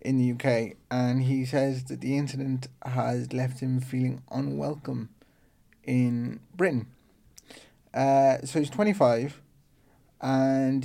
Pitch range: 130-150 Hz